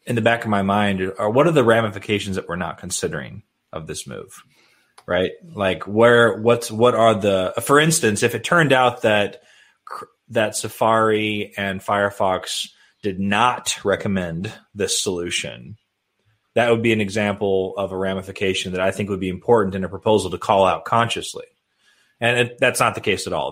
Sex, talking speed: male, 175 wpm